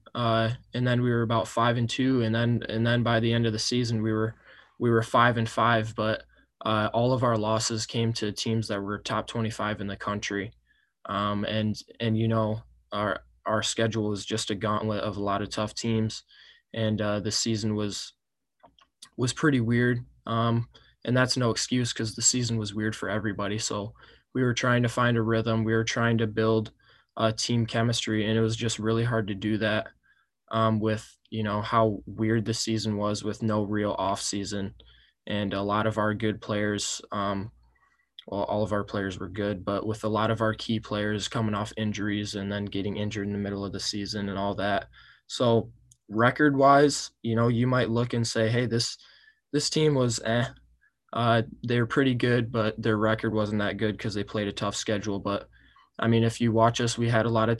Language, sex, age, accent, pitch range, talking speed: English, male, 20-39, American, 105-115 Hz, 210 wpm